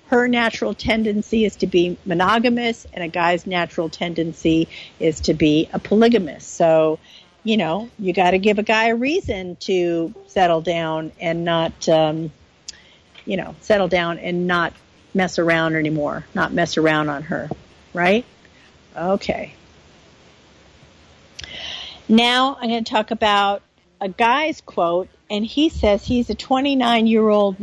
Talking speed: 140 wpm